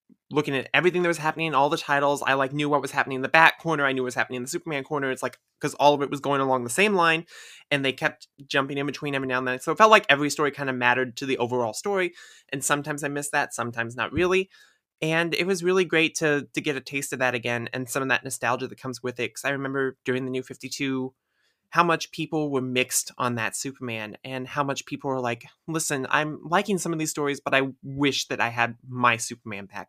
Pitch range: 130-150 Hz